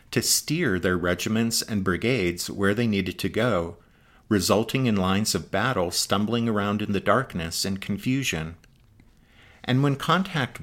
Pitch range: 90-120 Hz